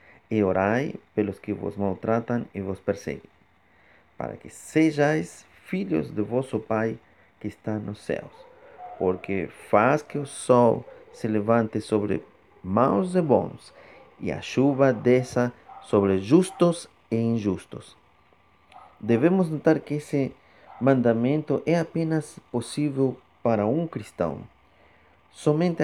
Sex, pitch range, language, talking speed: male, 105-140 Hz, Portuguese, 120 wpm